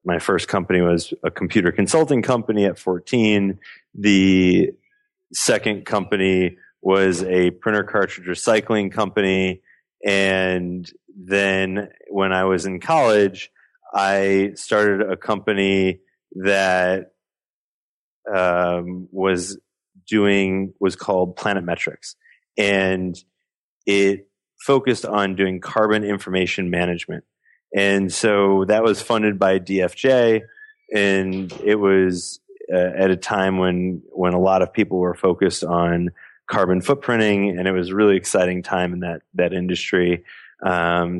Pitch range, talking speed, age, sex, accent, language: 90-100 Hz, 120 wpm, 30-49, male, American, English